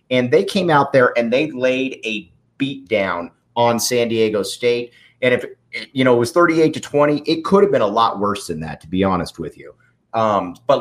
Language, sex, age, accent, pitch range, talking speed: English, male, 30-49, American, 110-145 Hz, 220 wpm